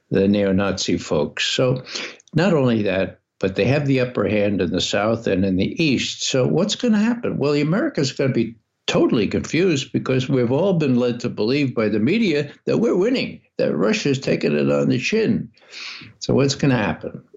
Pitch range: 105-135 Hz